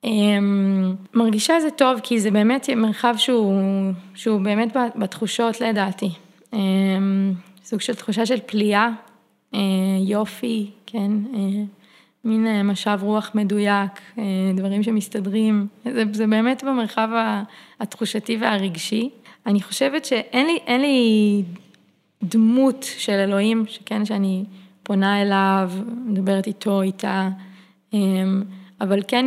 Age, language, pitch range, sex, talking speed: 20-39, Hebrew, 195-225 Hz, female, 115 wpm